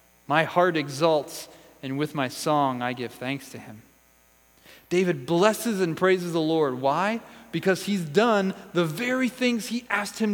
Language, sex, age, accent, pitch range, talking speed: English, male, 30-49, American, 145-230 Hz, 165 wpm